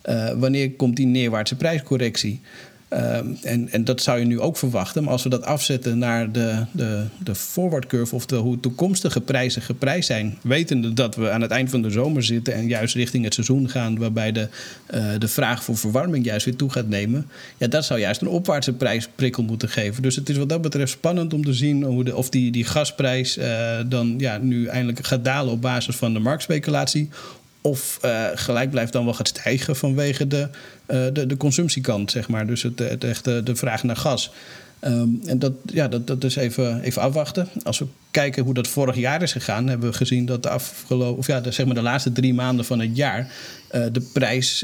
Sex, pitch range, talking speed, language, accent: male, 115-135 Hz, 210 wpm, Dutch, Dutch